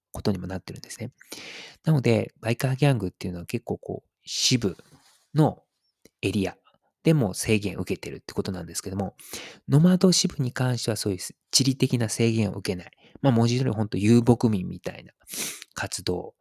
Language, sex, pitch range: Japanese, male, 100-145 Hz